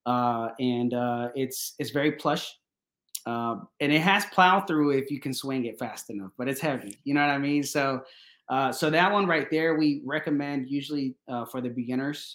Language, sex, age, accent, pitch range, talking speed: English, male, 20-39, American, 120-140 Hz, 210 wpm